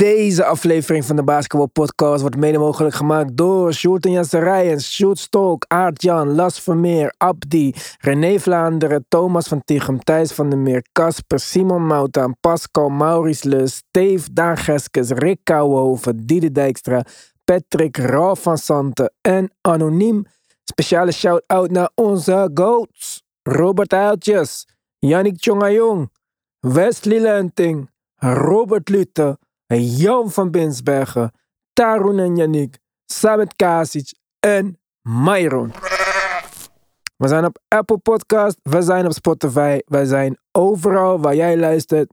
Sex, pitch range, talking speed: male, 145-185 Hz, 120 wpm